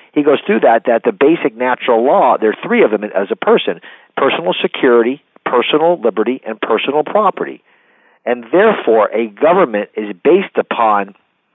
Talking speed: 160 wpm